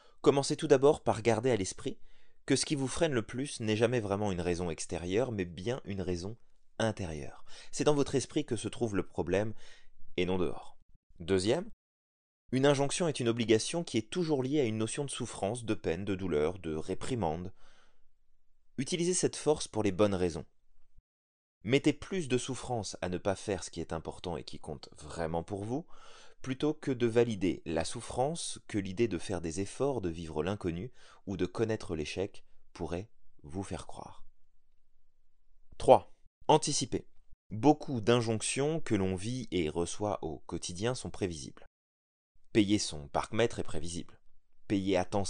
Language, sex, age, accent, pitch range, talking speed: French, male, 20-39, French, 85-125 Hz, 170 wpm